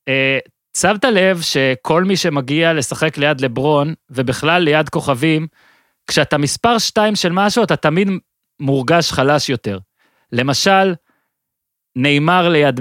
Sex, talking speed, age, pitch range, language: male, 115 wpm, 30-49, 140-180 Hz, Hebrew